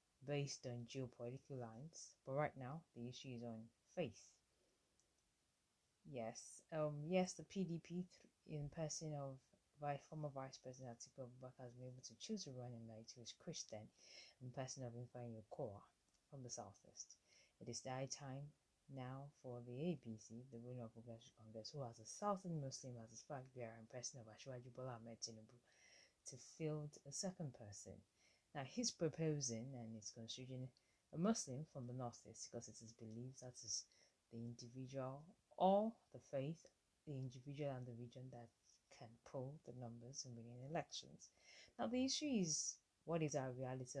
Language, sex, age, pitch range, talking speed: English, female, 20-39, 120-150 Hz, 160 wpm